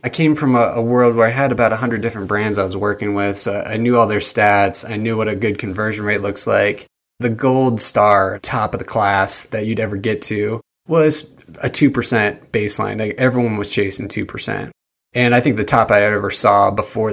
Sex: male